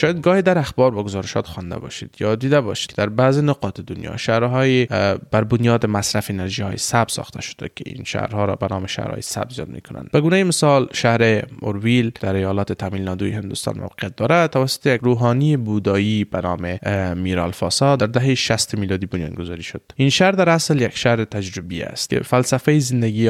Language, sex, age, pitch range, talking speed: Persian, male, 20-39, 100-130 Hz, 175 wpm